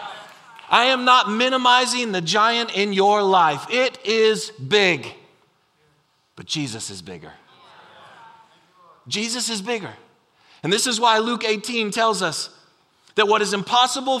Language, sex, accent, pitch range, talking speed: English, male, American, 175-230 Hz, 130 wpm